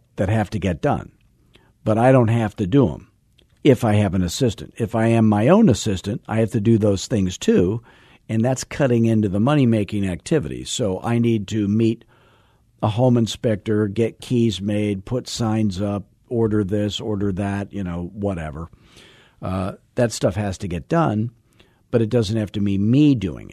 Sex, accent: male, American